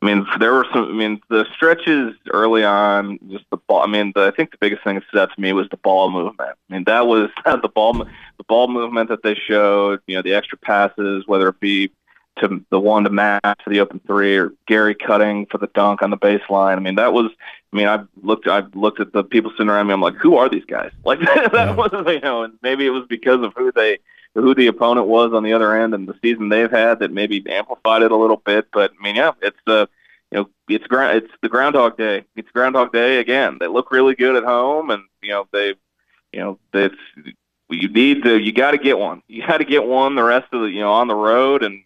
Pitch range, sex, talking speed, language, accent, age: 100-125 Hz, male, 250 wpm, English, American, 30-49